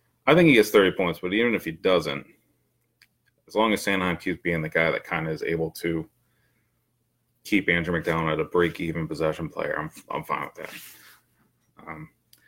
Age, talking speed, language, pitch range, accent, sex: 30-49, 190 wpm, English, 80-95 Hz, American, male